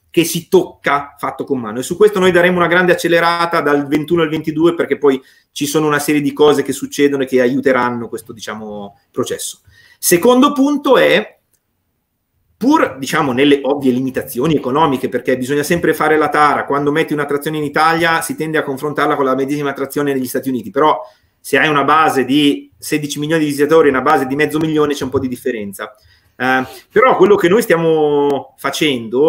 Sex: male